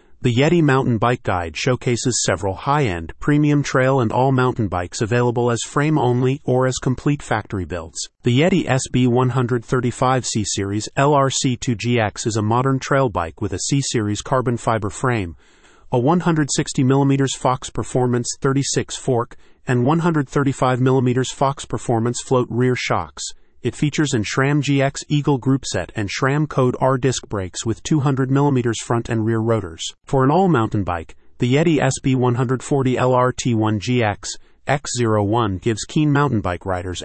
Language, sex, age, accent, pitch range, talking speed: English, male, 40-59, American, 110-135 Hz, 140 wpm